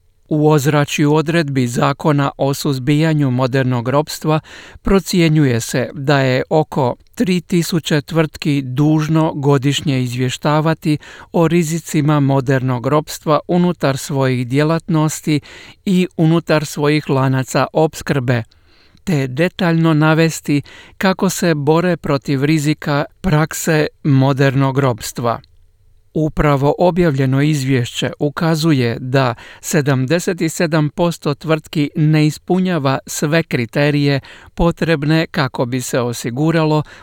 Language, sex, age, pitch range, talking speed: Croatian, male, 50-69, 135-160 Hz, 90 wpm